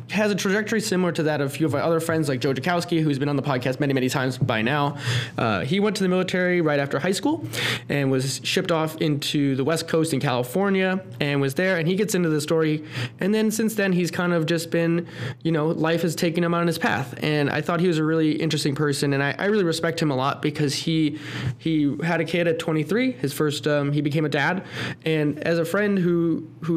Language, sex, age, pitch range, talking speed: English, male, 20-39, 140-175 Hz, 245 wpm